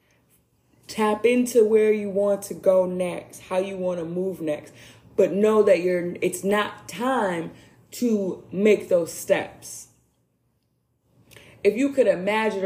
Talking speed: 135 wpm